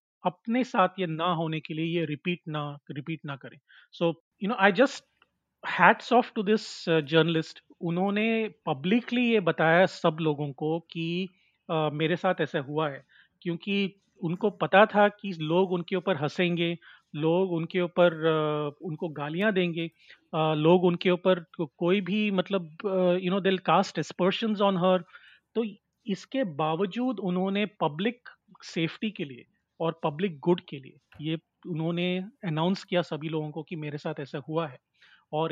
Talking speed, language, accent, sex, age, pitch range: 160 wpm, Hindi, native, male, 40-59, 160-195 Hz